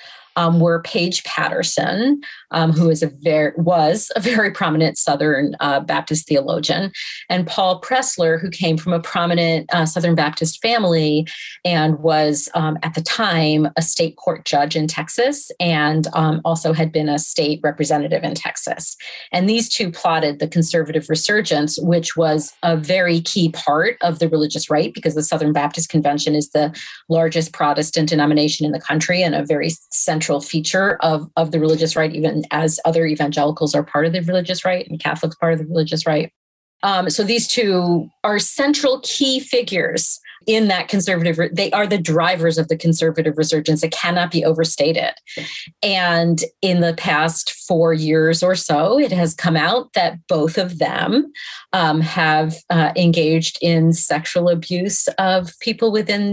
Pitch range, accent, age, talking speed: 155-185 Hz, American, 40-59, 165 wpm